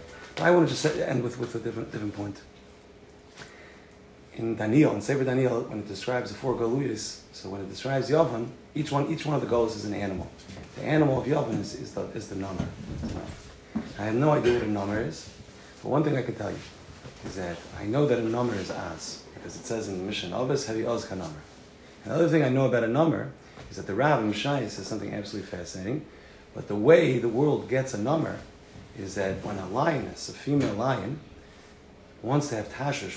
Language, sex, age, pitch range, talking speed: English, male, 30-49, 100-145 Hz, 215 wpm